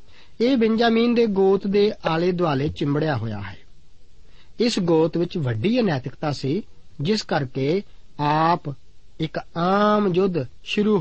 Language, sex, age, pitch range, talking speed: Punjabi, male, 50-69, 140-200 Hz, 125 wpm